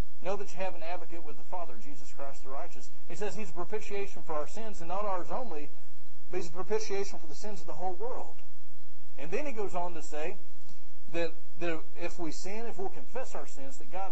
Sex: male